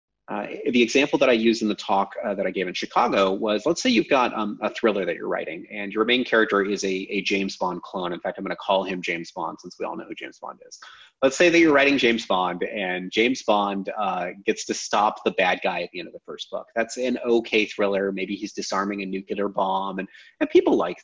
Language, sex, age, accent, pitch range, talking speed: English, male, 30-49, American, 100-125 Hz, 260 wpm